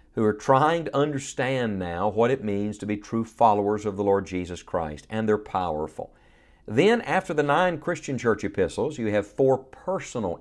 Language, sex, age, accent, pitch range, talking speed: English, male, 50-69, American, 105-135 Hz, 185 wpm